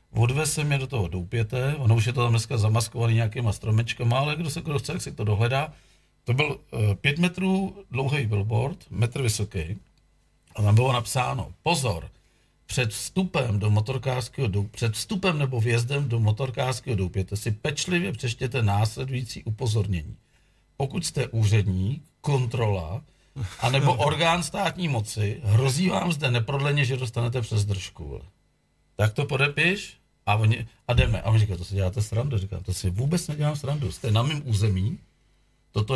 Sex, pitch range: male, 110-145 Hz